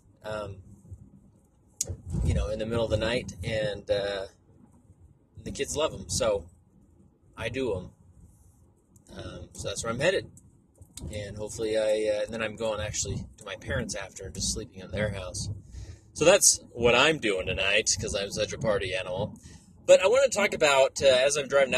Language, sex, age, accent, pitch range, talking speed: English, male, 30-49, American, 100-135 Hz, 180 wpm